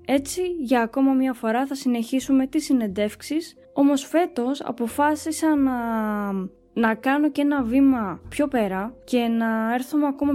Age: 20-39